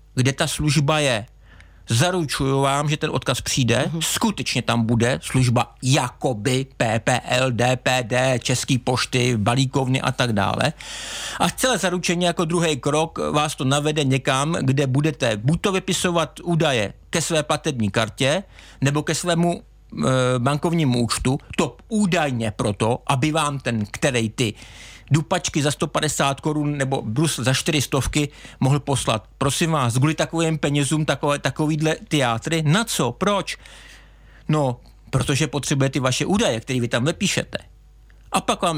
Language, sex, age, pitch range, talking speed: Czech, male, 50-69, 125-165 Hz, 140 wpm